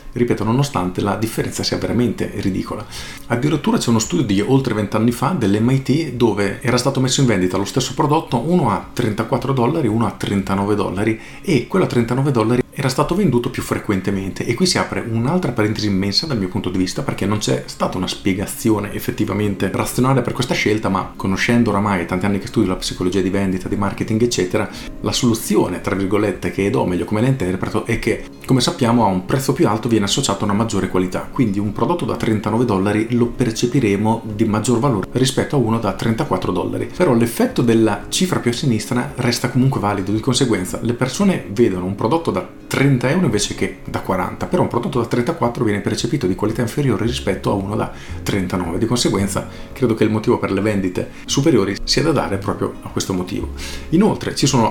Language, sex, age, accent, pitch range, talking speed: Italian, male, 40-59, native, 100-125 Hz, 200 wpm